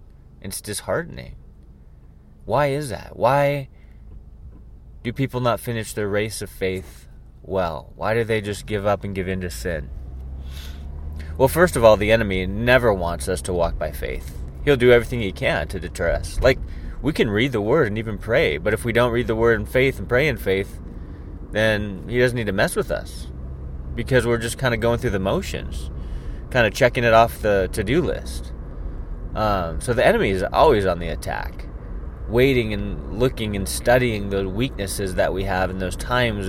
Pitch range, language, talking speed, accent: 80-120 Hz, English, 190 wpm, American